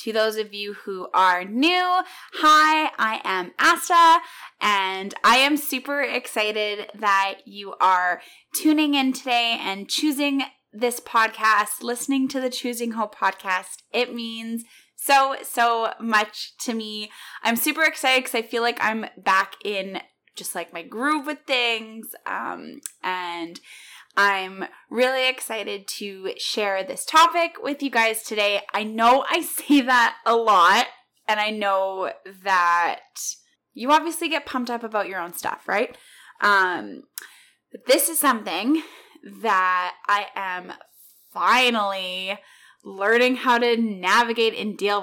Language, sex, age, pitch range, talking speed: English, female, 20-39, 195-260 Hz, 135 wpm